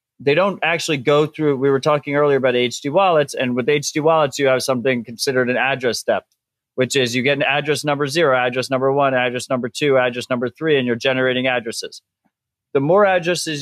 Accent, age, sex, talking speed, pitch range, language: American, 30-49, male, 205 wpm, 120-150 Hz, English